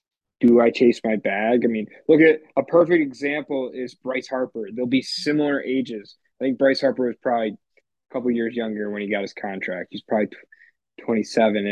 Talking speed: 185 wpm